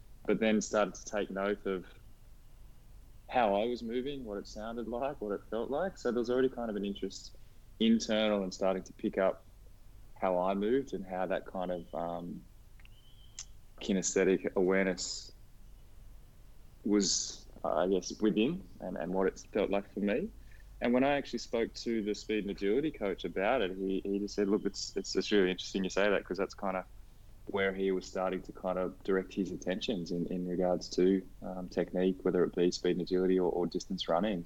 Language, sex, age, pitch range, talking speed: English, male, 20-39, 95-110 Hz, 200 wpm